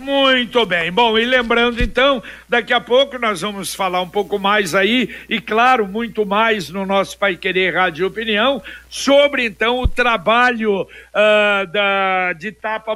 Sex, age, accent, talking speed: male, 60-79, Brazilian, 155 wpm